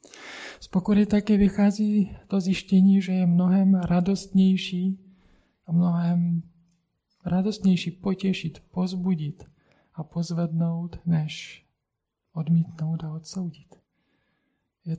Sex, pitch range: male, 160-180 Hz